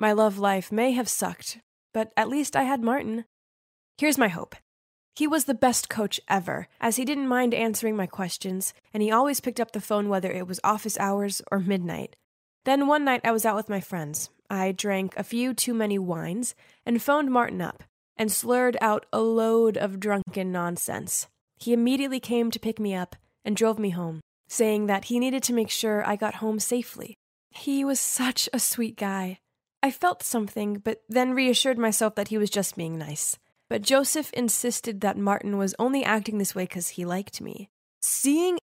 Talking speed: 195 wpm